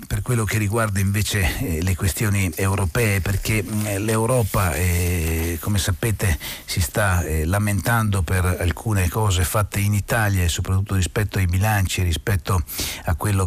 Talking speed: 130 wpm